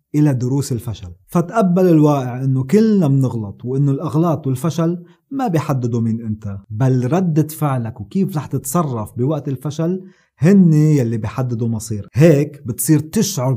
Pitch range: 125-155 Hz